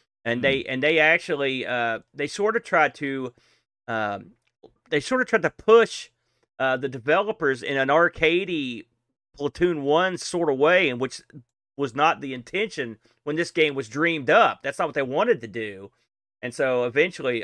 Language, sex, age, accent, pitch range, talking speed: English, male, 40-59, American, 130-165 Hz, 175 wpm